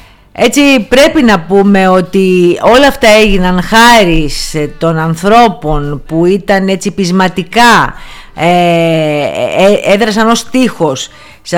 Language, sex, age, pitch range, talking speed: Greek, female, 50-69, 160-200 Hz, 100 wpm